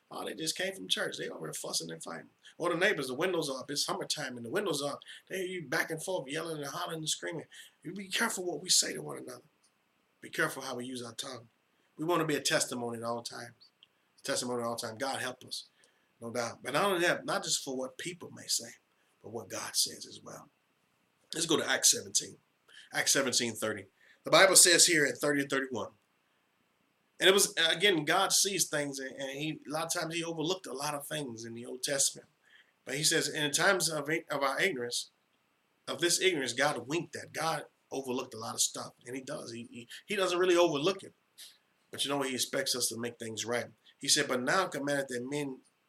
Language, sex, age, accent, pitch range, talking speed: English, male, 30-49, American, 125-165 Hz, 230 wpm